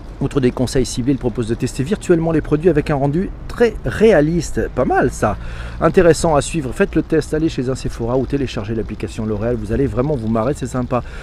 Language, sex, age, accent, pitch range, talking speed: French, male, 40-59, French, 135-175 Hz, 215 wpm